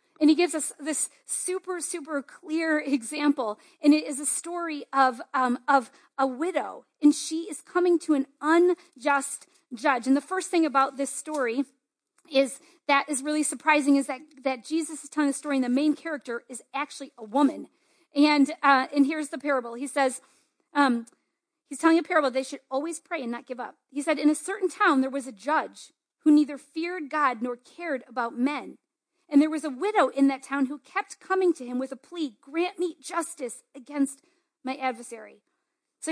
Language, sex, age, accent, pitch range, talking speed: English, female, 40-59, American, 275-340 Hz, 195 wpm